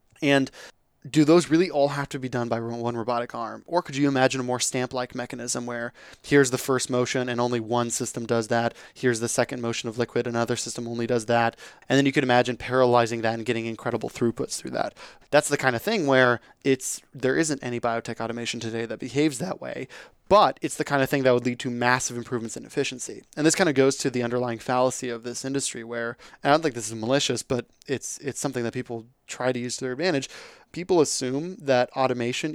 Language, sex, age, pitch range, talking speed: English, male, 20-39, 120-135 Hz, 230 wpm